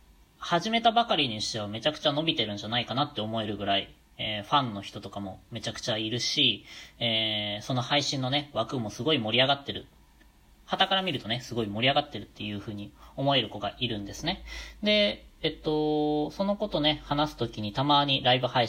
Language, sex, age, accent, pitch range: Japanese, female, 20-39, native, 105-140 Hz